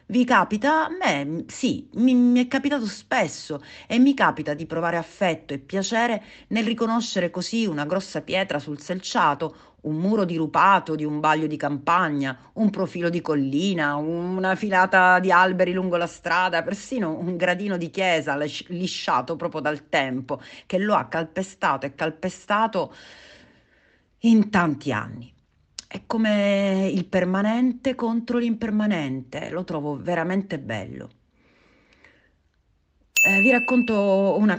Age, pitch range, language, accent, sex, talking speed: 40-59, 145-200 Hz, Italian, native, female, 135 wpm